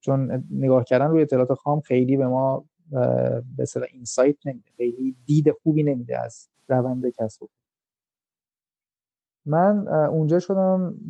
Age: 30-49